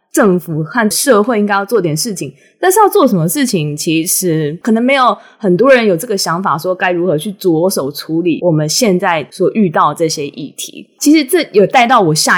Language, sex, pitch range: Chinese, female, 170-230 Hz